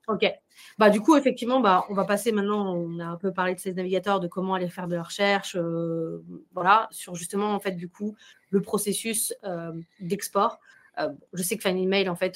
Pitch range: 165-200 Hz